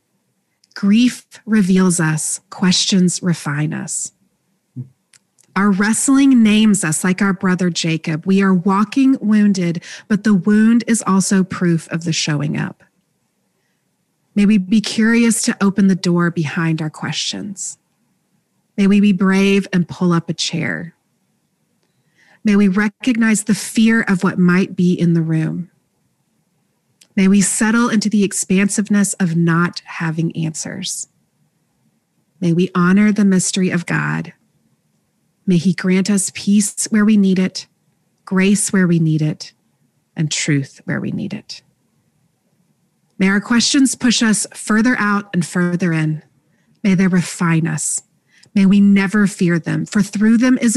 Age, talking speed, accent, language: 30-49, 140 wpm, American, English